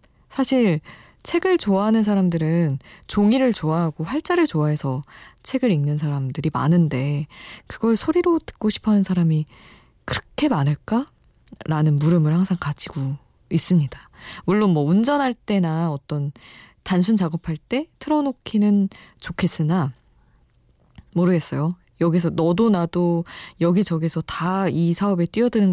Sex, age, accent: female, 20-39, native